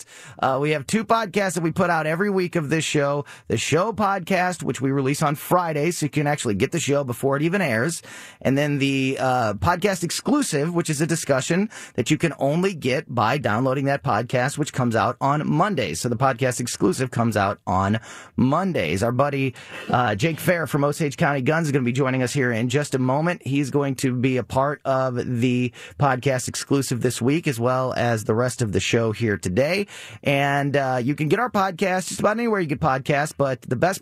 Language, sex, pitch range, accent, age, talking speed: English, male, 125-160 Hz, American, 30-49, 215 wpm